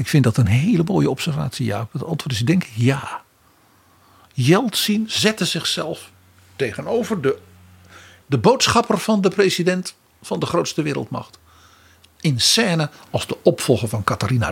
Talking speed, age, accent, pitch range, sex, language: 150 wpm, 60-79, Dutch, 105-160 Hz, male, Dutch